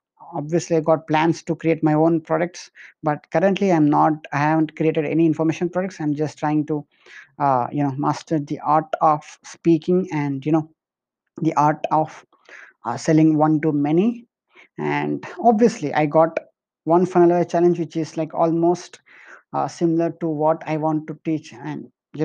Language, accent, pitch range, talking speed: English, Indian, 155-170 Hz, 170 wpm